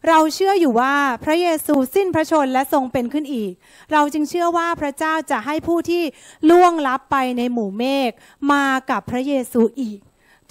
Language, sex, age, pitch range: Thai, female, 30-49, 230-295 Hz